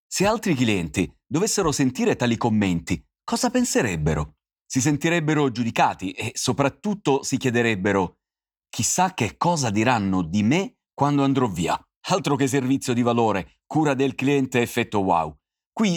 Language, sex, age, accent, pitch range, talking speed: Italian, male, 30-49, native, 105-145 Hz, 135 wpm